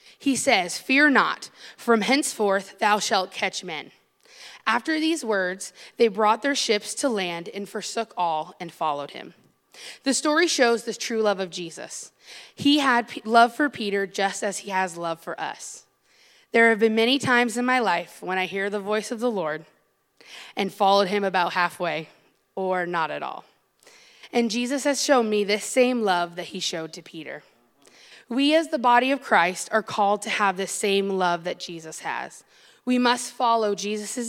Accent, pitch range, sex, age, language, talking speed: American, 185-245 Hz, female, 20-39, English, 180 wpm